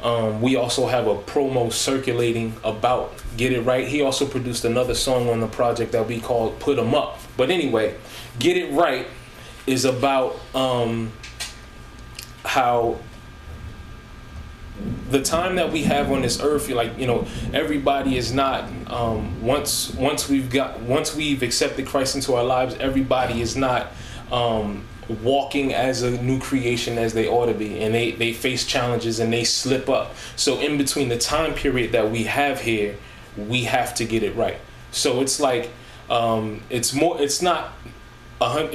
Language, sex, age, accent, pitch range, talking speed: English, male, 20-39, American, 115-135 Hz, 165 wpm